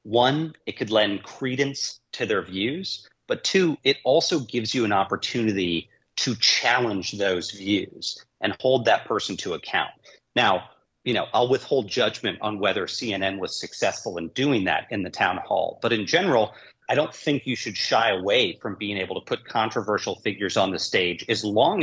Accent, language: American, English